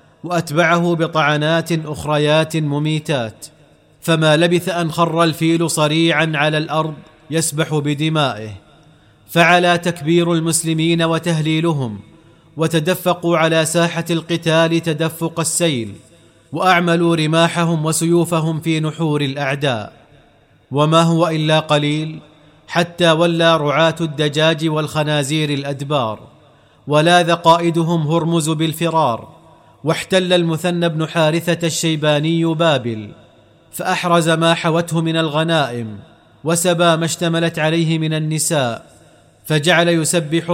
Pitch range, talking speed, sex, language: 150-165 Hz, 95 wpm, male, Arabic